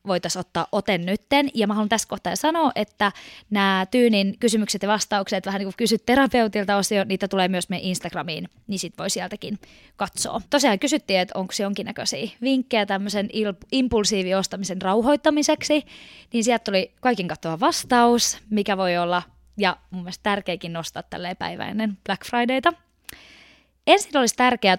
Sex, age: female, 20-39